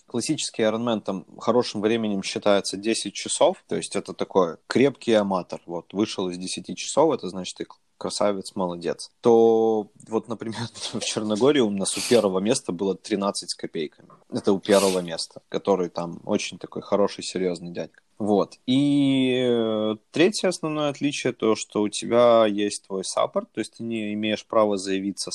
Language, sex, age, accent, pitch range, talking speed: Russian, male, 20-39, native, 95-115 Hz, 165 wpm